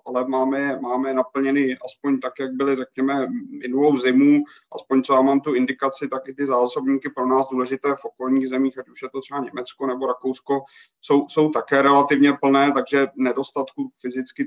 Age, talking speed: 30-49, 180 wpm